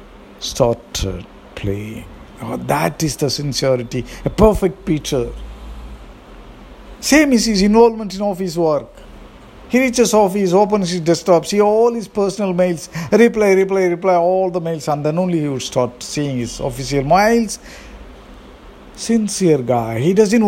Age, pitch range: 50-69, 130-200 Hz